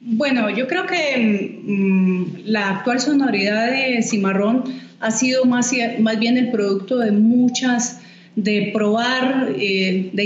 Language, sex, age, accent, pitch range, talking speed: Spanish, female, 30-49, Colombian, 195-245 Hz, 135 wpm